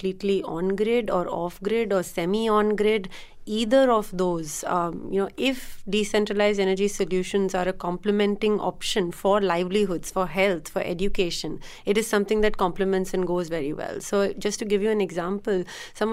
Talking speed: 165 wpm